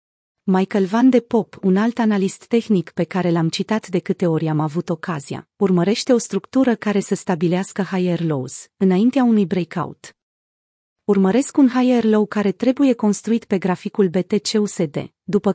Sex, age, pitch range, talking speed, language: female, 30-49, 185-225 Hz, 155 wpm, Romanian